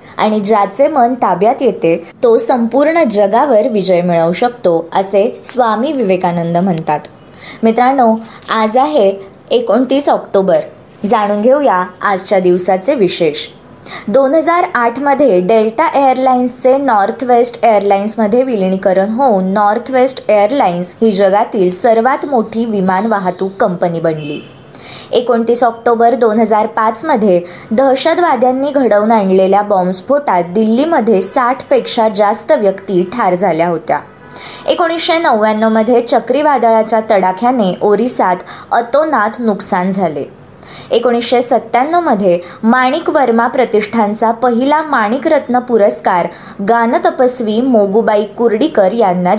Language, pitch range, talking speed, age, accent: Marathi, 195-255 Hz, 95 wpm, 20-39, native